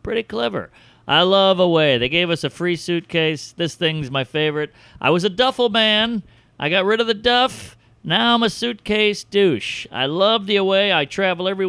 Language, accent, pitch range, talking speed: English, American, 160-215 Hz, 195 wpm